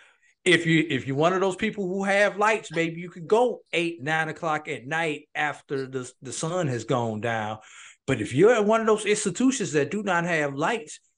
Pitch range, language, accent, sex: 145-190 Hz, English, American, male